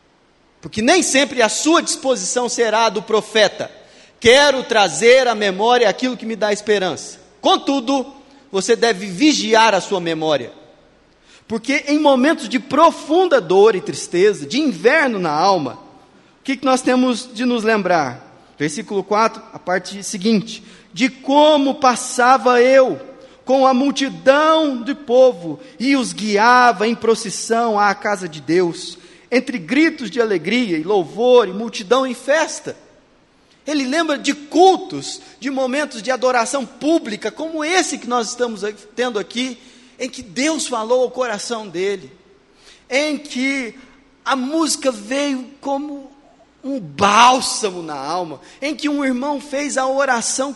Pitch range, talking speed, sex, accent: 225-280 Hz, 140 wpm, male, Brazilian